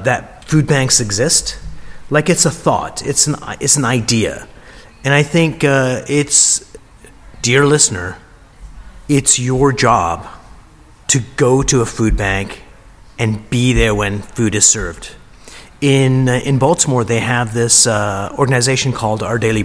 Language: English